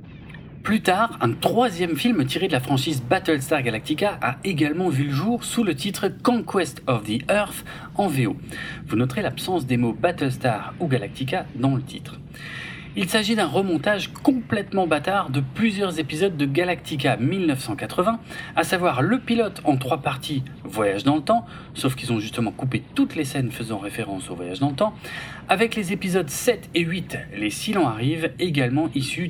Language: French